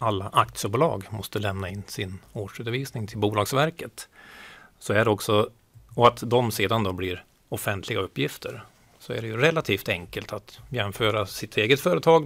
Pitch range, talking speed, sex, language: 105-130 Hz, 155 wpm, male, Swedish